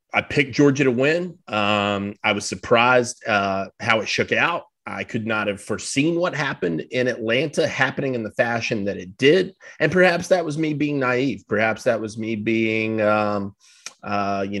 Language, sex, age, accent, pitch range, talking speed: English, male, 30-49, American, 105-135 Hz, 185 wpm